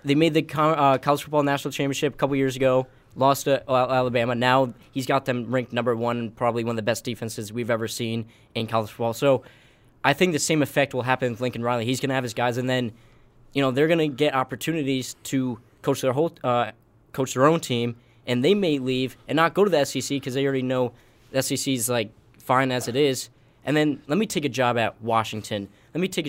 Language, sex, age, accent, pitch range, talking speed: English, male, 10-29, American, 120-140 Hz, 235 wpm